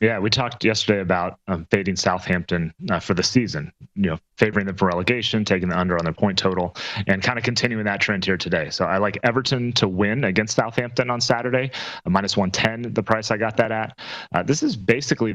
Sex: male